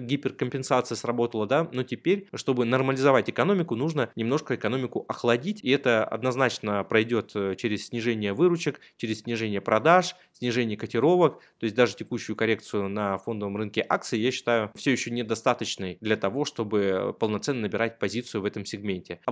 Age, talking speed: 20-39, 150 wpm